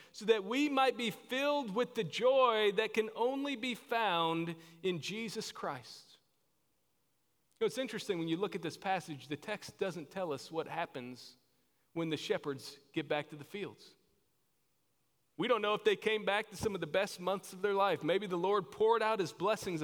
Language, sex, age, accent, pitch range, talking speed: English, male, 40-59, American, 180-225 Hz, 190 wpm